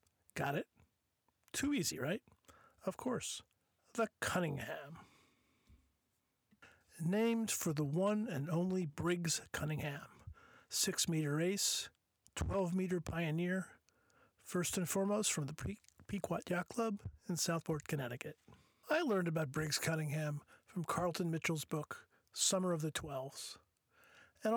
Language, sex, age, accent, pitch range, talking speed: English, male, 50-69, American, 160-200 Hz, 110 wpm